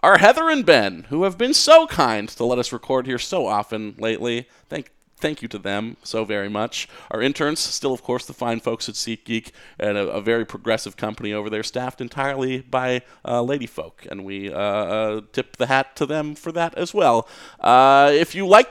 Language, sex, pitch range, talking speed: English, male, 115-150 Hz, 210 wpm